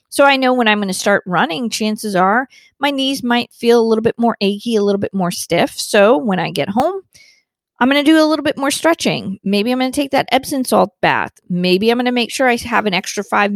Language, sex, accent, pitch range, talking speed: English, female, American, 195-265 Hz, 260 wpm